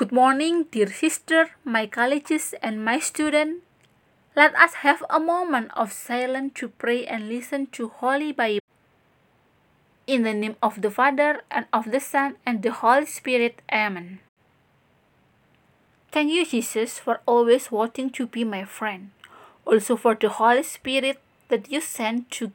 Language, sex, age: Indonesian, female, 20-39